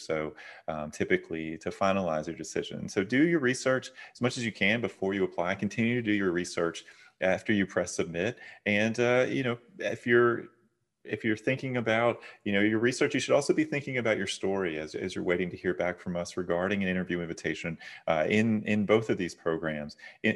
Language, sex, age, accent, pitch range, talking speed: English, male, 30-49, American, 90-115 Hz, 210 wpm